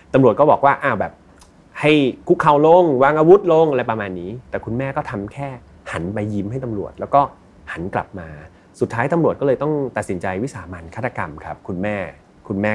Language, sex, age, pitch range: Thai, male, 30-49, 95-140 Hz